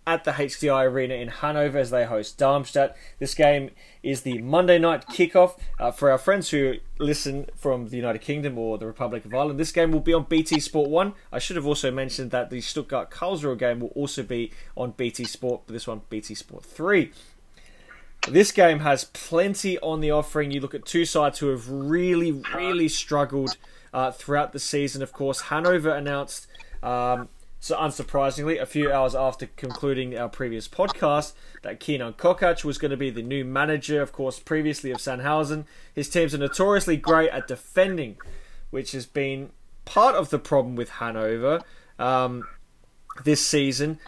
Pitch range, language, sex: 130-160 Hz, English, male